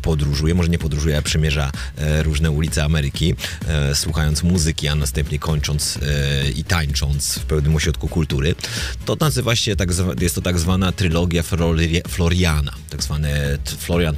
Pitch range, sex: 75-85 Hz, male